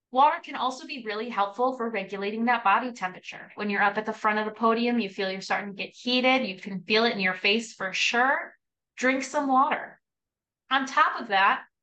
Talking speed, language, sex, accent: 220 wpm, English, female, American